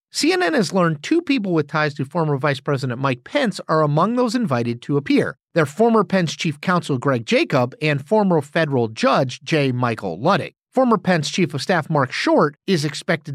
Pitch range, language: 135-195 Hz, English